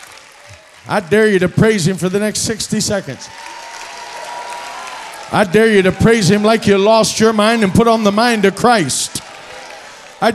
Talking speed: 175 wpm